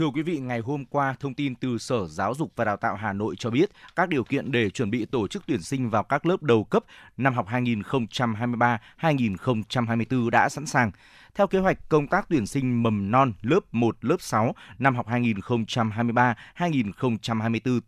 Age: 20-39